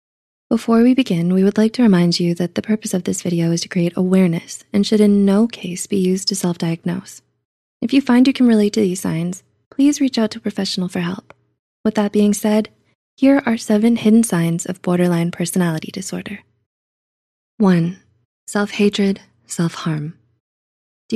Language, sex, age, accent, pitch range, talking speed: English, female, 20-39, American, 175-210 Hz, 175 wpm